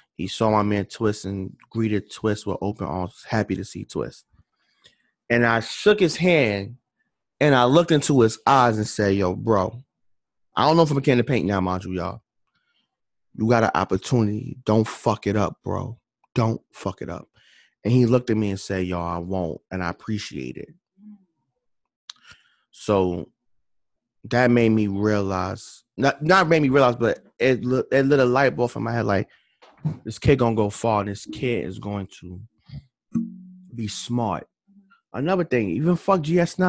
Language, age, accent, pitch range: English, 20-39, American, 105-175 Hz